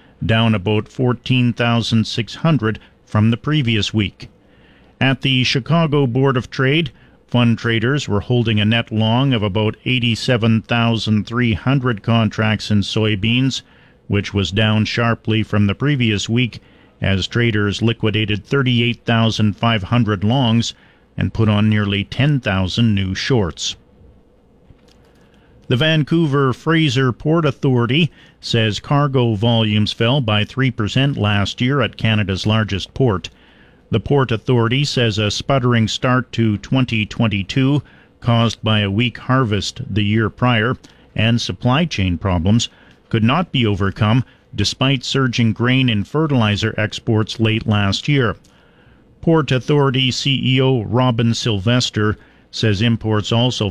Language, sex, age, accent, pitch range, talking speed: English, male, 50-69, American, 105-130 Hz, 115 wpm